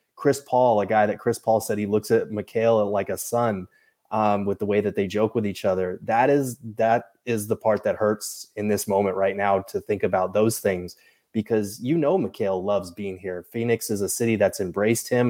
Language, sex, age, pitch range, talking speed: English, male, 20-39, 100-115 Hz, 225 wpm